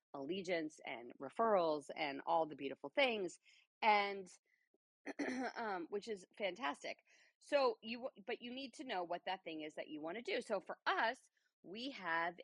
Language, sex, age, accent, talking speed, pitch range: English, female, 40-59, American, 165 wpm, 145-220 Hz